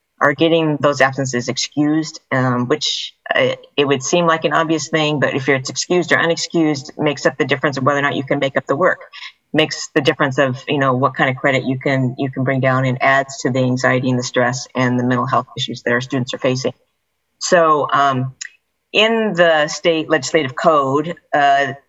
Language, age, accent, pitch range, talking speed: English, 40-59, American, 125-140 Hz, 215 wpm